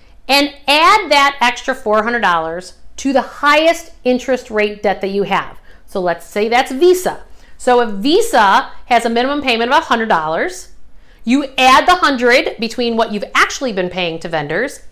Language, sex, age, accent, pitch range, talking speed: English, female, 50-69, American, 205-295 Hz, 160 wpm